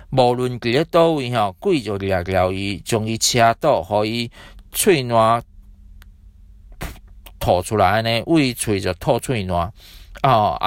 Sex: male